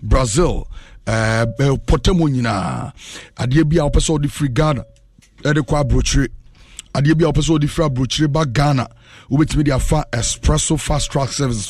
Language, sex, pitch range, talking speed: English, male, 120-155 Hz, 140 wpm